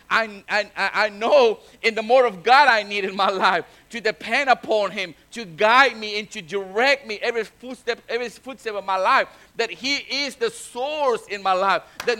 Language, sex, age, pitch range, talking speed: English, male, 50-69, 195-245 Hz, 200 wpm